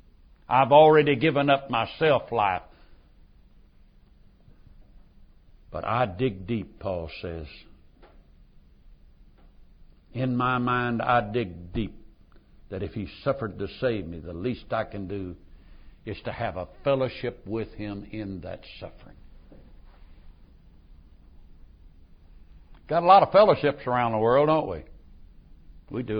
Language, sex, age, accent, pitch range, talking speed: English, male, 60-79, American, 80-130 Hz, 120 wpm